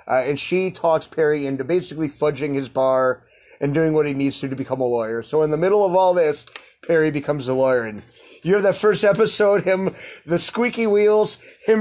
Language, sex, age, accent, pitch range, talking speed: English, male, 30-49, American, 140-180 Hz, 215 wpm